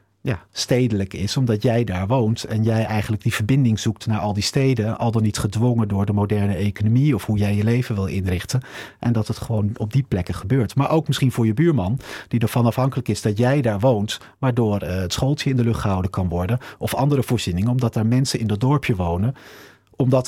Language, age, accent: Dutch, 40-59, Dutch